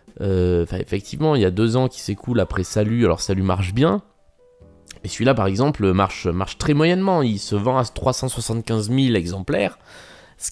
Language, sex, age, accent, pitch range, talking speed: French, male, 20-39, French, 95-135 Hz, 200 wpm